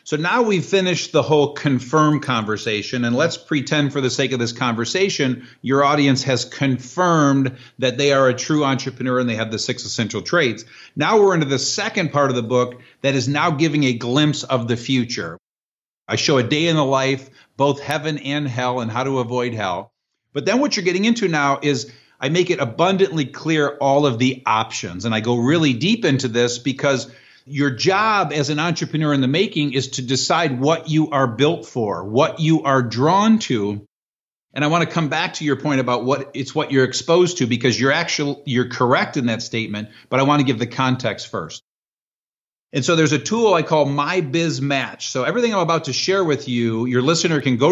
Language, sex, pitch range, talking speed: English, male, 125-155 Hz, 210 wpm